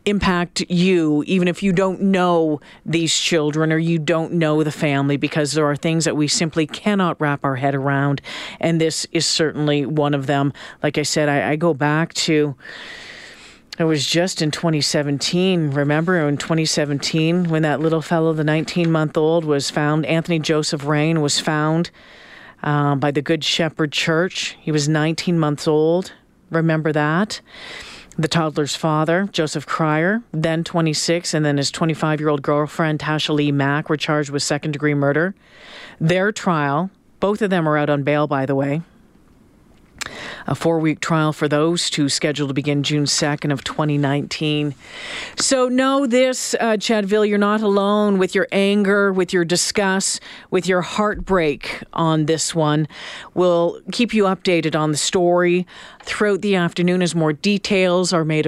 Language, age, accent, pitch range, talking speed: English, 40-59, American, 150-180 Hz, 160 wpm